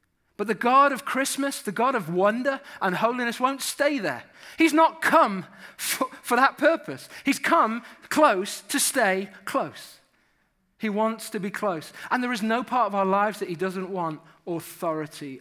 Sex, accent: male, British